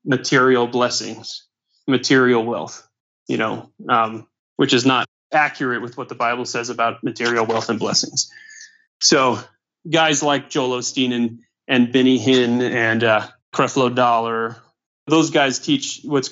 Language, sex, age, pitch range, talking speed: English, male, 30-49, 125-140 Hz, 140 wpm